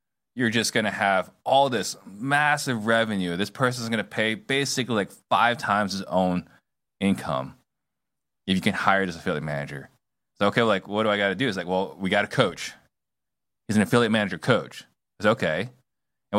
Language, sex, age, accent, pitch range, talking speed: English, male, 20-39, American, 95-120 Hz, 180 wpm